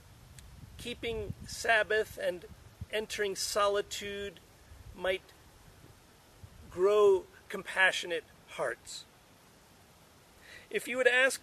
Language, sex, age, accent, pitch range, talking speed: English, male, 40-59, American, 180-230 Hz, 70 wpm